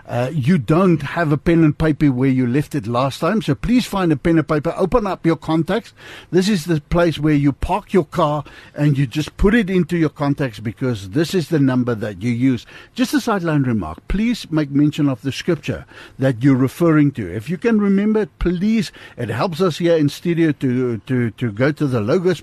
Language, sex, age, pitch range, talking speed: English, male, 60-79, 130-185 Hz, 220 wpm